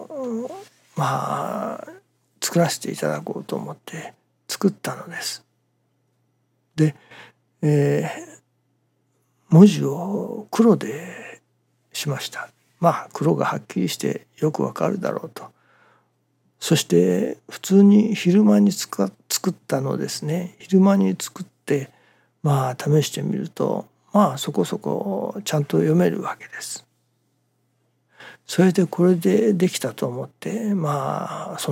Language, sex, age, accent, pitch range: Japanese, male, 60-79, native, 135-195 Hz